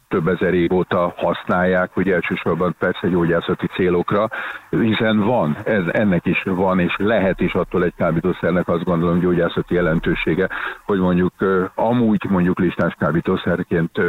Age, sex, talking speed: 50-69, male, 135 wpm